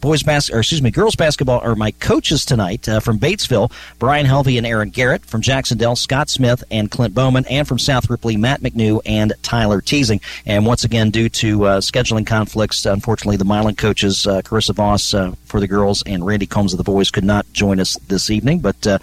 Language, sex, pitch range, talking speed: English, male, 105-140 Hz, 215 wpm